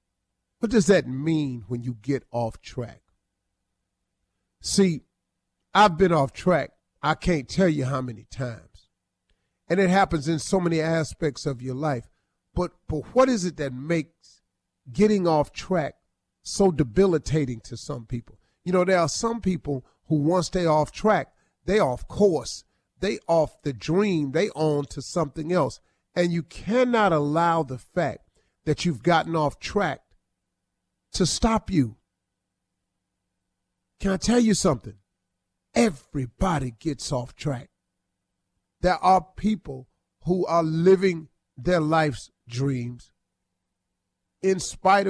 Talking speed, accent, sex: 135 wpm, American, male